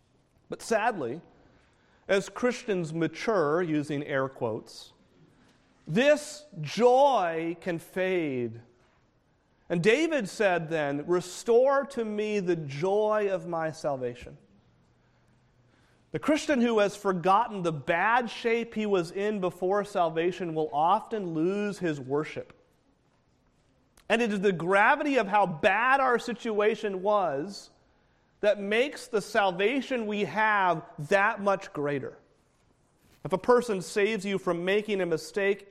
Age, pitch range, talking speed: 40-59, 145-210 Hz, 120 wpm